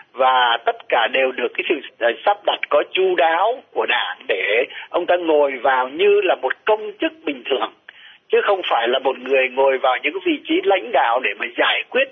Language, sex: Vietnamese, male